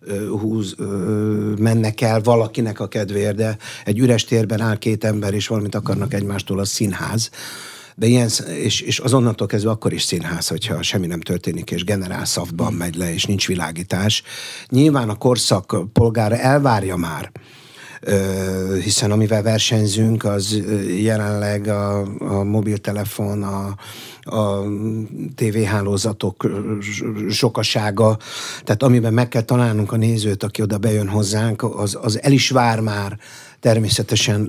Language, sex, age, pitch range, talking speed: Hungarian, male, 60-79, 100-115 Hz, 135 wpm